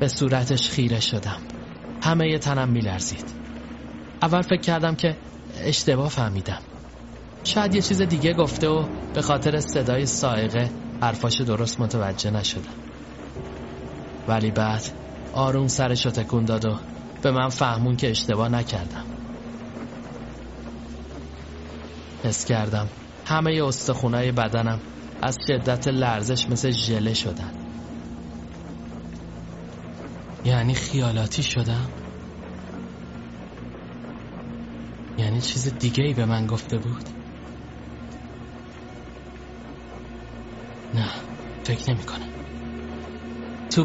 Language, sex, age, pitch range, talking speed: Persian, male, 30-49, 80-130 Hz, 95 wpm